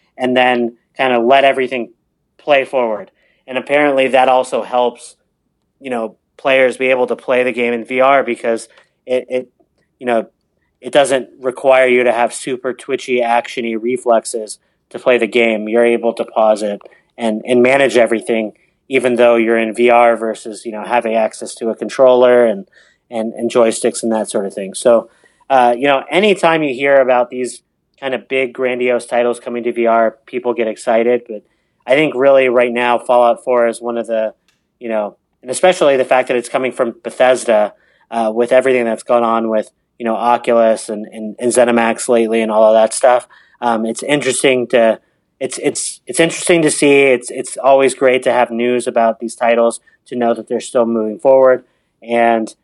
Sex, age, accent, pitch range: male, 30-49, American, 115-130 Hz